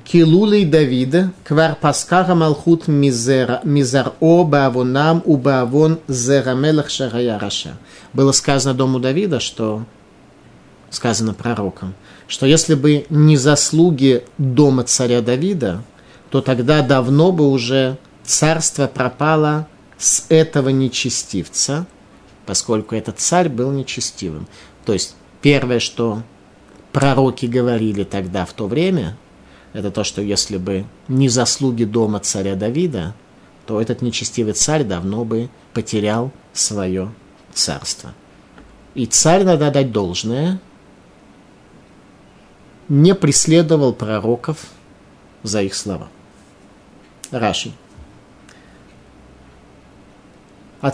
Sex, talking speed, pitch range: male, 100 wpm, 105-150 Hz